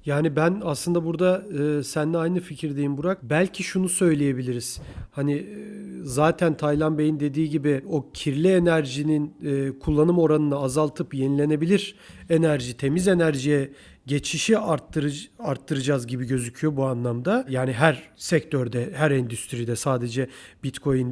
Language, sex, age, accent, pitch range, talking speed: Turkish, male, 40-59, native, 145-185 Hz, 125 wpm